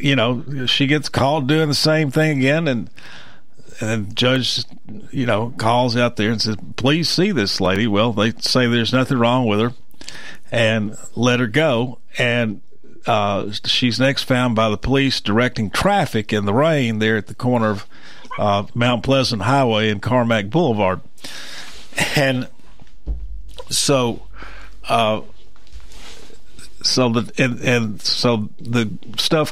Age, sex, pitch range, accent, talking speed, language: 50-69, male, 110-130 Hz, American, 145 wpm, English